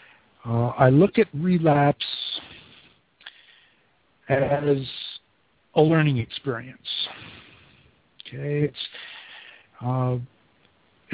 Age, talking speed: 50-69, 65 wpm